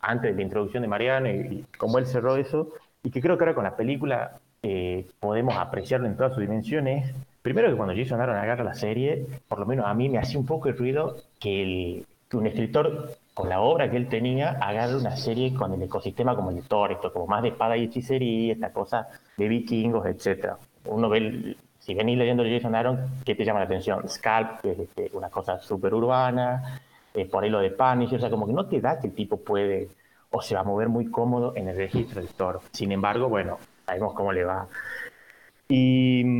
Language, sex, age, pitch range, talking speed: Spanish, male, 30-49, 110-130 Hz, 225 wpm